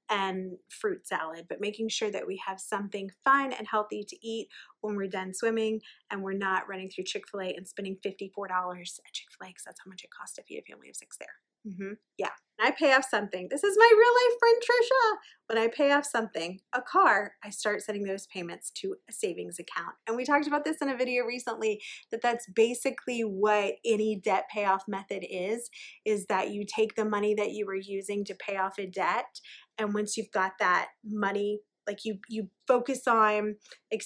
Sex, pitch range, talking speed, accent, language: female, 195-230 Hz, 205 wpm, American, English